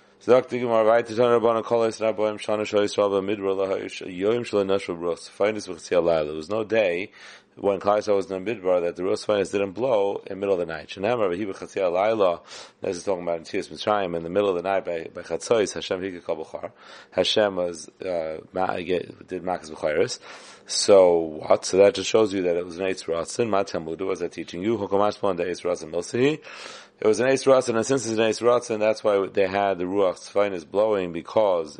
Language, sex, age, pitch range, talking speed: English, male, 30-49, 90-115 Hz, 140 wpm